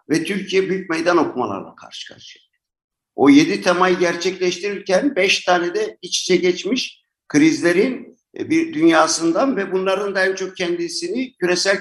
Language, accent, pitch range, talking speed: Turkish, native, 150-200 Hz, 135 wpm